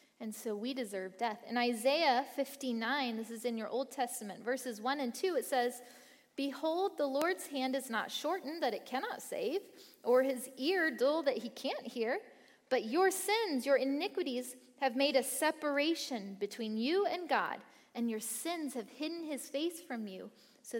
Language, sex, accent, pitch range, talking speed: English, female, American, 225-285 Hz, 180 wpm